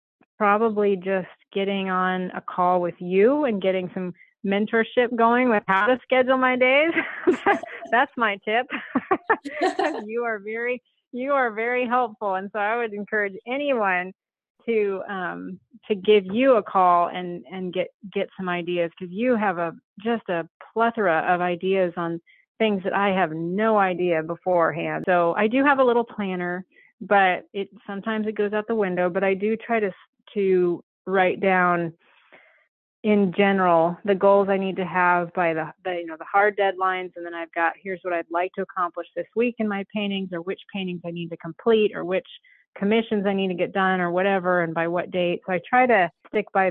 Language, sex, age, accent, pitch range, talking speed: English, female, 30-49, American, 180-220 Hz, 190 wpm